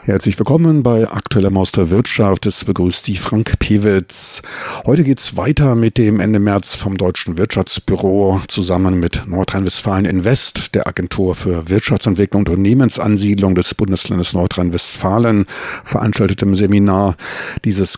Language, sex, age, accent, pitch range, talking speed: German, male, 50-69, German, 95-110 Hz, 125 wpm